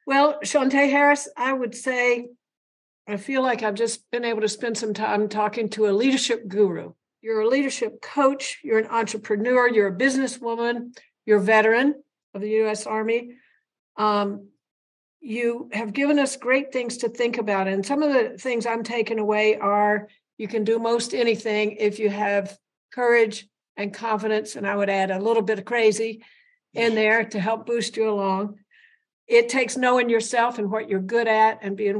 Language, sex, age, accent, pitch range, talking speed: English, female, 60-79, American, 210-240 Hz, 180 wpm